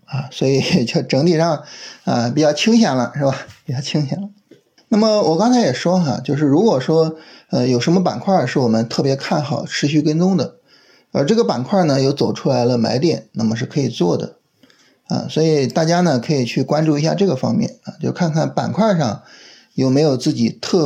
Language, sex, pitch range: Chinese, male, 125-185 Hz